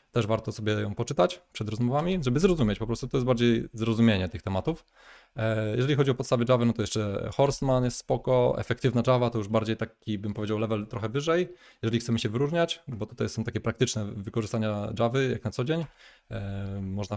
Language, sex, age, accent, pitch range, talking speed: Polish, male, 20-39, native, 105-125 Hz, 190 wpm